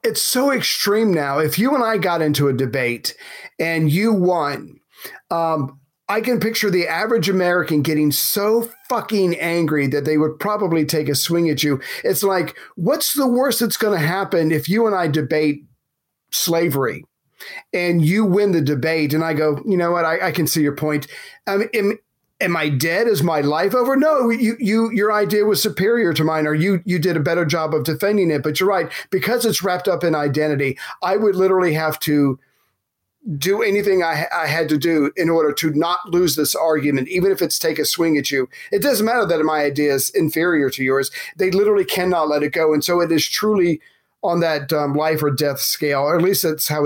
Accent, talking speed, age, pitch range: American, 210 wpm, 40-59, 150-200 Hz